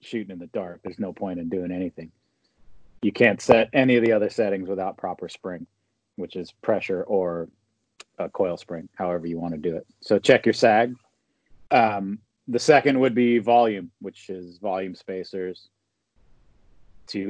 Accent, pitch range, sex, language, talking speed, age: American, 100-125 Hz, male, English, 170 wpm, 30-49